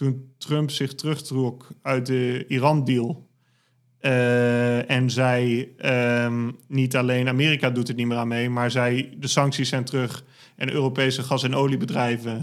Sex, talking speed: male, 150 wpm